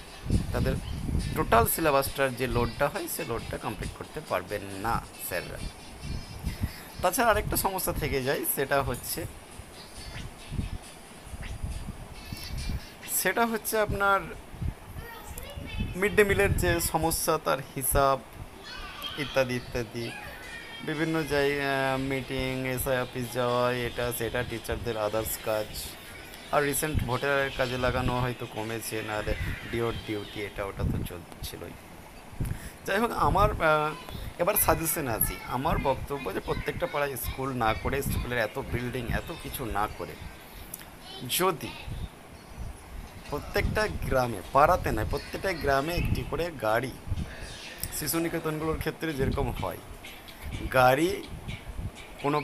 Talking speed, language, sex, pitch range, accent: 100 wpm, Bengali, male, 105-145 Hz, native